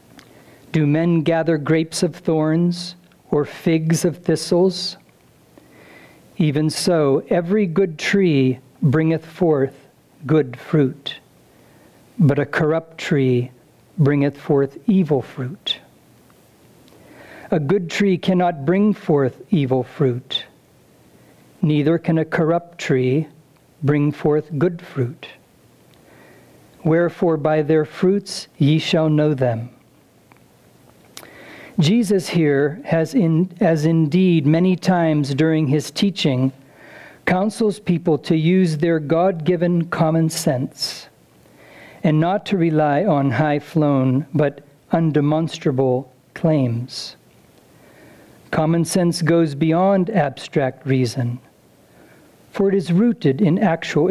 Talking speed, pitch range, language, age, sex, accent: 100 wpm, 145-175 Hz, English, 60-79, male, American